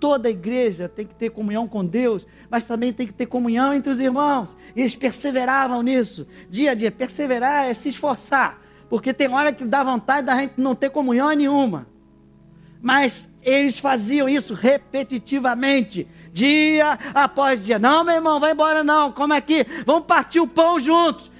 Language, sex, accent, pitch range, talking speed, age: Portuguese, male, Brazilian, 260-330 Hz, 175 wpm, 50-69